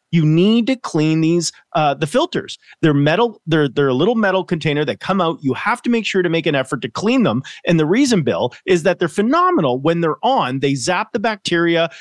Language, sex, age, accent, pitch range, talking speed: English, male, 30-49, American, 150-210 Hz, 230 wpm